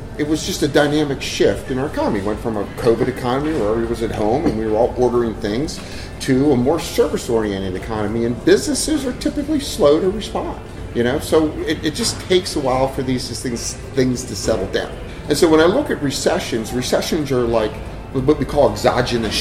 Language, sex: English, male